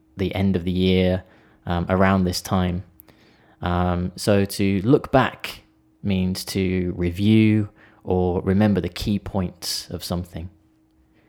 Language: Japanese